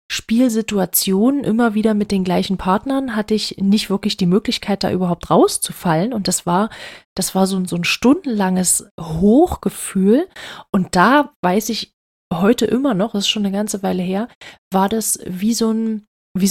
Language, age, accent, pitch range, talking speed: German, 30-49, German, 180-215 Hz, 170 wpm